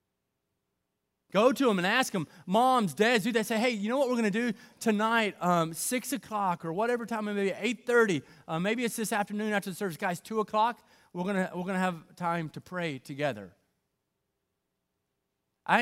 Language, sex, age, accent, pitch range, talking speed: English, male, 30-49, American, 150-225 Hz, 195 wpm